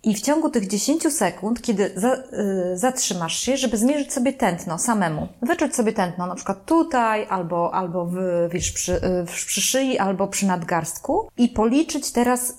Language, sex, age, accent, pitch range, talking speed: Polish, female, 20-39, native, 185-250 Hz, 170 wpm